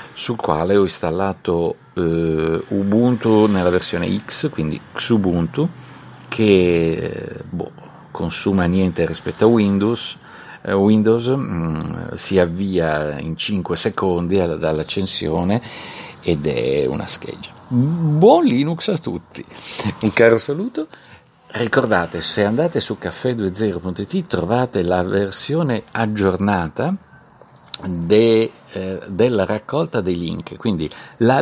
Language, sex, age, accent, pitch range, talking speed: Italian, male, 50-69, native, 90-130 Hz, 105 wpm